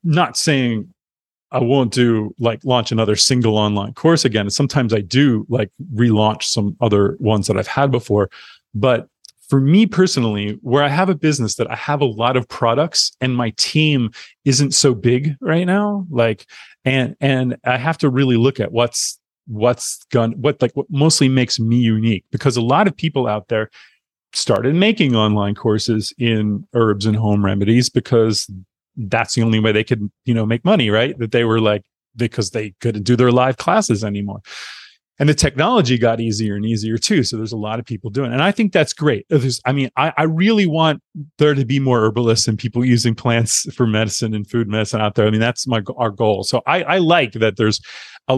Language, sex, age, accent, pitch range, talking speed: English, male, 30-49, American, 110-135 Hz, 205 wpm